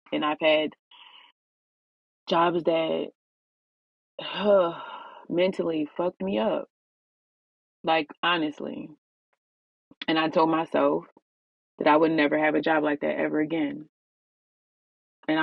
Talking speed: 105 wpm